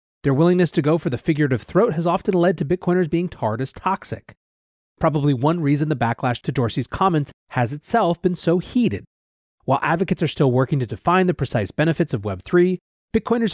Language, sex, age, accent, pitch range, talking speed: English, male, 30-49, American, 120-170 Hz, 190 wpm